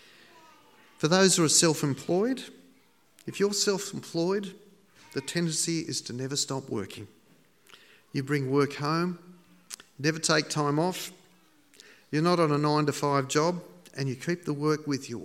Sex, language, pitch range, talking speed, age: male, English, 125-165 Hz, 140 wpm, 40-59